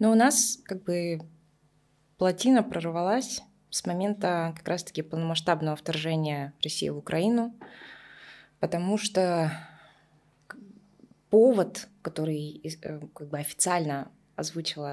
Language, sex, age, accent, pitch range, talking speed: Russian, female, 20-39, native, 150-185 Hz, 95 wpm